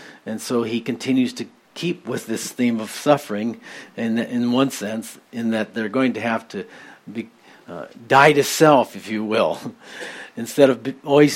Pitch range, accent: 110-130 Hz, American